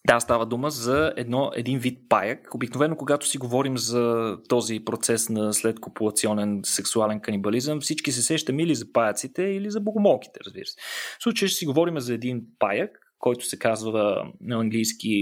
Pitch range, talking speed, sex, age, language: 120-160 Hz, 160 wpm, male, 20-39, Bulgarian